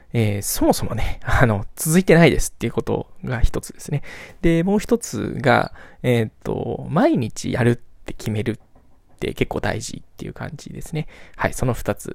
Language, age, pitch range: Japanese, 20-39, 120-160 Hz